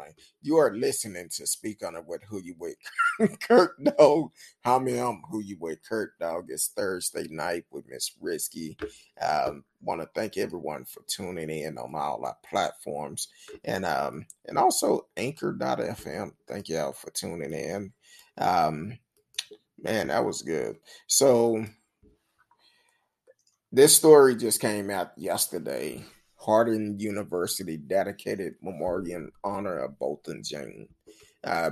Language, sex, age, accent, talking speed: English, male, 20-39, American, 135 wpm